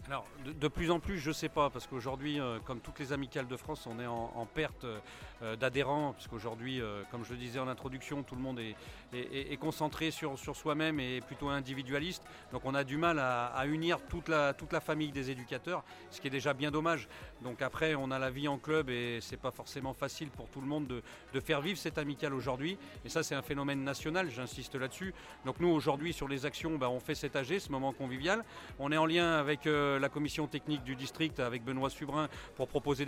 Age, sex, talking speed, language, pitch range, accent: 40-59, male, 245 wpm, French, 130-150 Hz, French